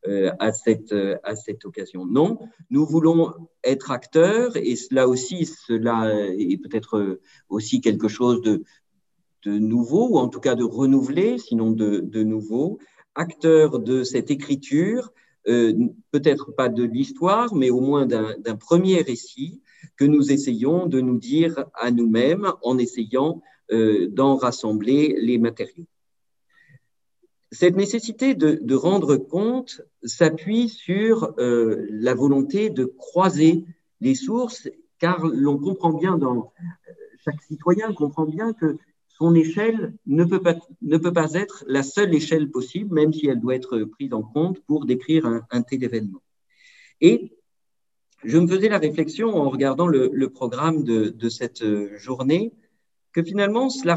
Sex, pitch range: male, 120-175 Hz